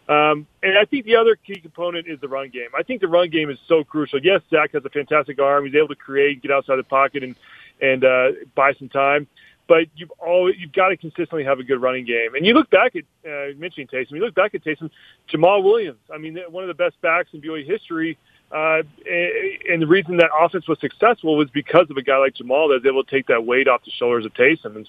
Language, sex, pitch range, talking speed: English, male, 135-170 Hz, 255 wpm